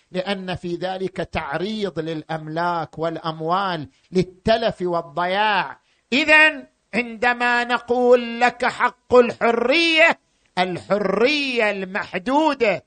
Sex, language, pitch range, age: male, Arabic, 175-245 Hz, 50-69